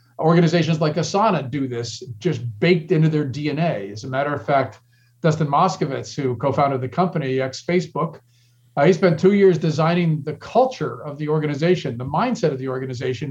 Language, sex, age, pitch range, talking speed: English, male, 50-69, 130-175 Hz, 165 wpm